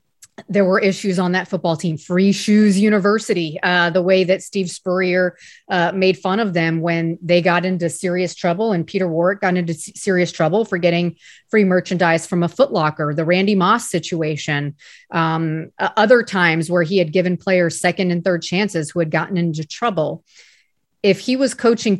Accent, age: American, 30-49